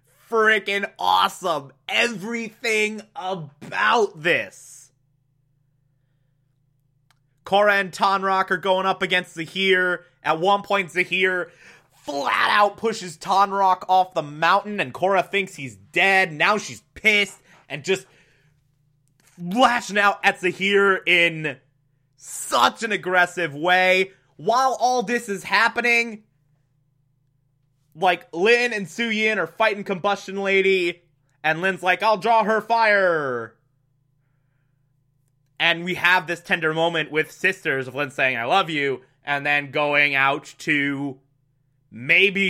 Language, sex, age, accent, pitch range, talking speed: English, male, 20-39, American, 140-200 Hz, 115 wpm